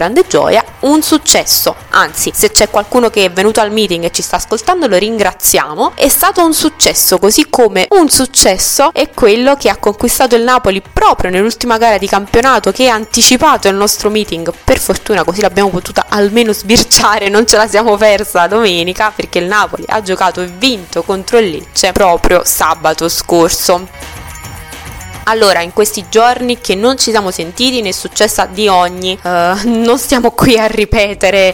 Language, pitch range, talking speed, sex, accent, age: Italian, 190-245 Hz, 170 wpm, female, native, 20-39